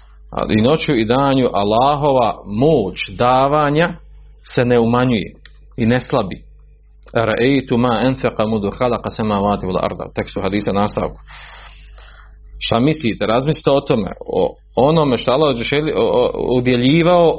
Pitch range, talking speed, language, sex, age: 95-130 Hz, 130 wpm, Croatian, male, 40-59